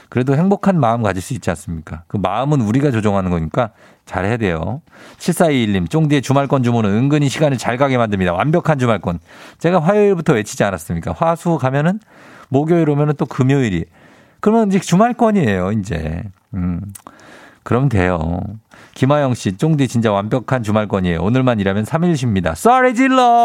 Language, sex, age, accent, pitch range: Korean, male, 50-69, native, 100-155 Hz